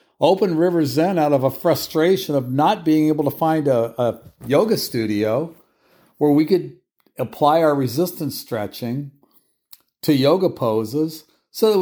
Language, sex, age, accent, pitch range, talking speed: English, male, 50-69, American, 130-175 Hz, 145 wpm